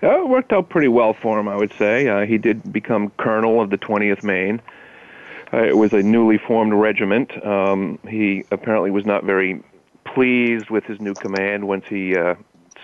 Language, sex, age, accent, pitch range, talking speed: English, male, 40-59, American, 95-105 Hz, 190 wpm